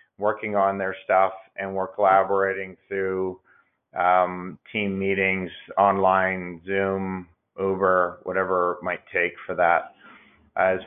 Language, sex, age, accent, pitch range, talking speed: English, male, 40-59, American, 95-105 Hz, 115 wpm